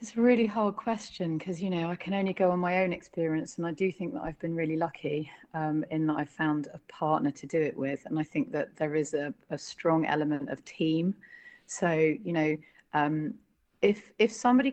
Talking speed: 225 wpm